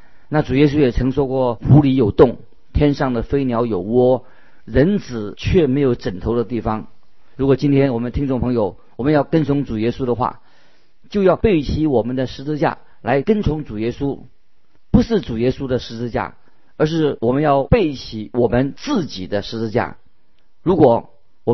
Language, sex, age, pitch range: Chinese, male, 40-59, 115-150 Hz